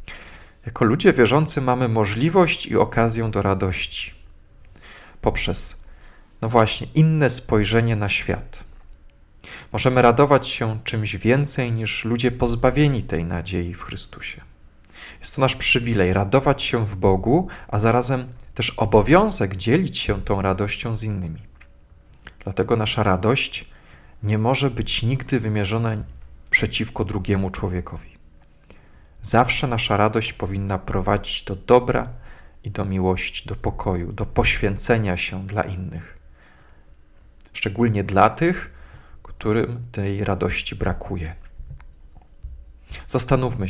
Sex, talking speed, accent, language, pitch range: male, 110 wpm, native, Polish, 85-120 Hz